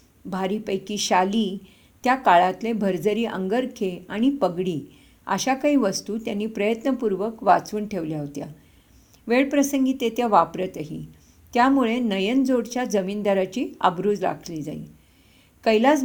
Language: English